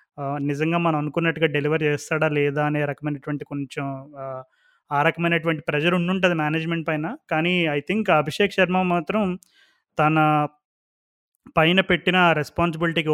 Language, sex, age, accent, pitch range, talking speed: Telugu, male, 20-39, native, 150-170 Hz, 115 wpm